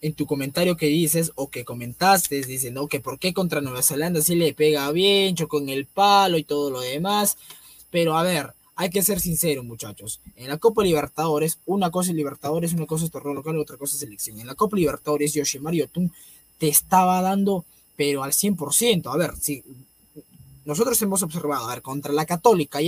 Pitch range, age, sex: 150-210 Hz, 20-39, male